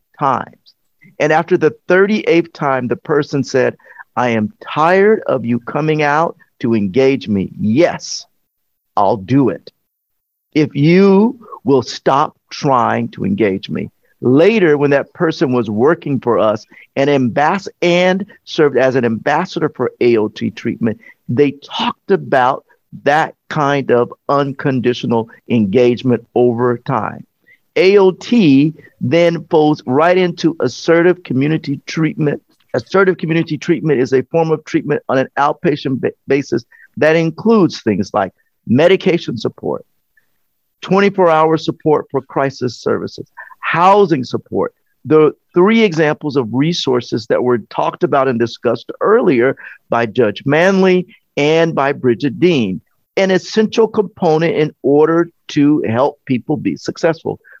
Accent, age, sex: American, 50-69, male